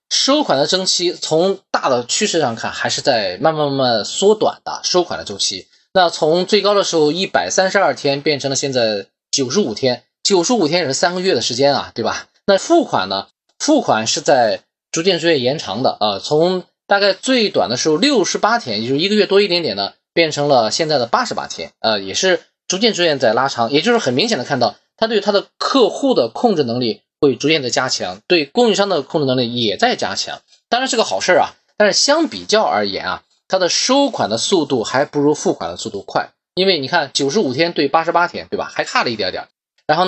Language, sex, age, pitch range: Chinese, male, 20-39, 140-200 Hz